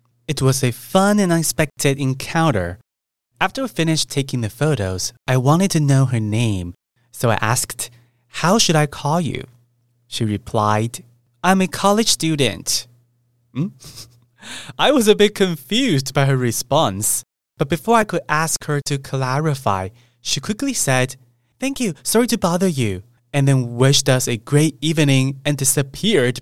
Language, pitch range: Chinese, 120-160 Hz